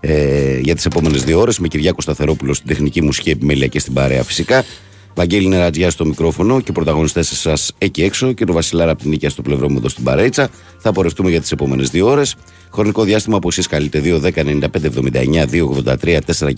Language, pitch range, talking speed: Greek, 75-95 Hz, 190 wpm